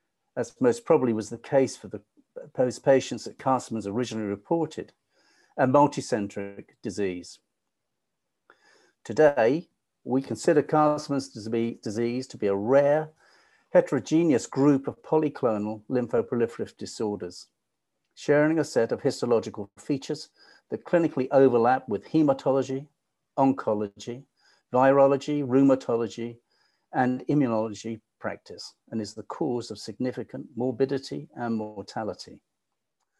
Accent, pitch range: British, 110-150 Hz